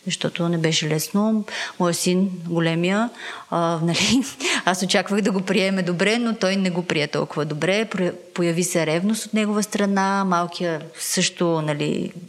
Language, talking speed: Bulgarian, 150 wpm